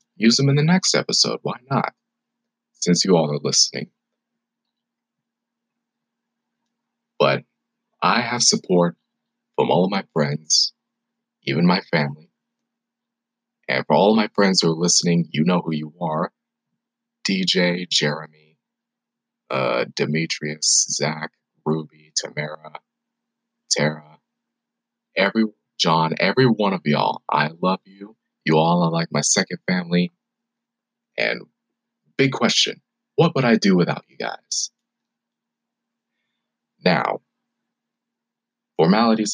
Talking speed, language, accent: 115 wpm, English, American